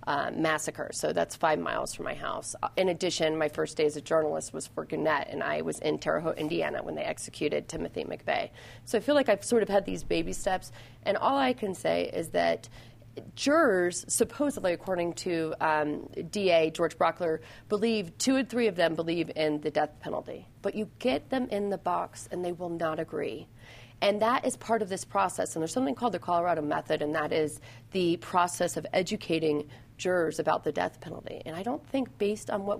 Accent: American